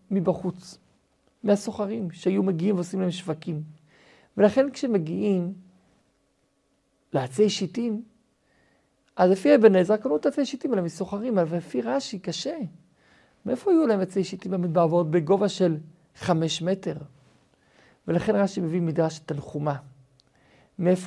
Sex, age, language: male, 50-69, Hebrew